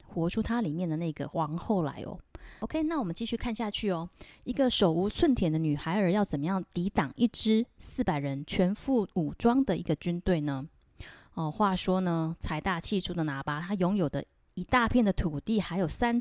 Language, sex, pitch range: Chinese, female, 155-205 Hz